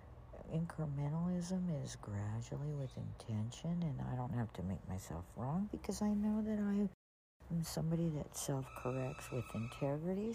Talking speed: 145 wpm